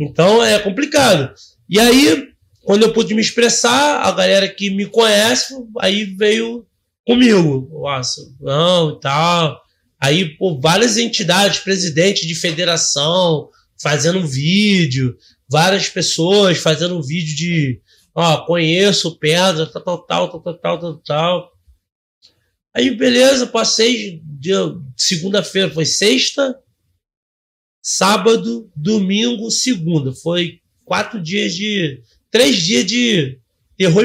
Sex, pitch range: male, 155-215 Hz